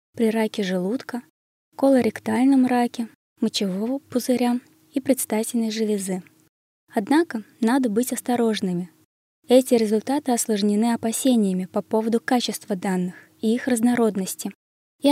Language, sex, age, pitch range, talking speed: Russian, female, 20-39, 200-245 Hz, 105 wpm